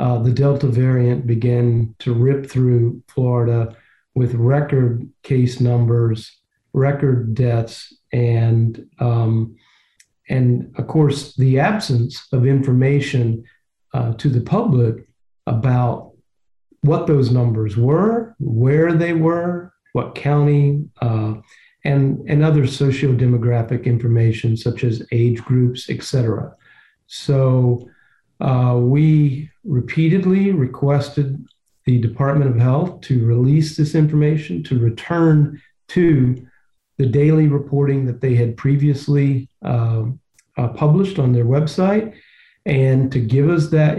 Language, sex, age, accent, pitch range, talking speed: English, male, 50-69, American, 120-145 Hz, 115 wpm